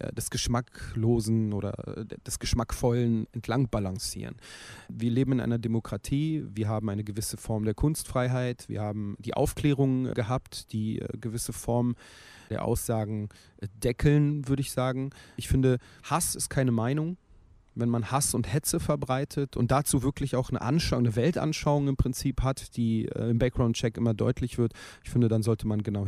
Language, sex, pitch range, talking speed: German, male, 115-130 Hz, 160 wpm